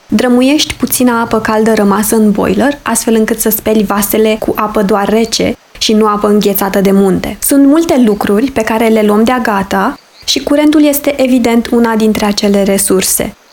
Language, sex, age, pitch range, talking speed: Romanian, female, 20-39, 210-270 Hz, 175 wpm